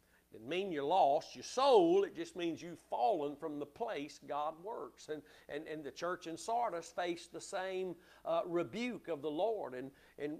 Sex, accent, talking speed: male, American, 195 wpm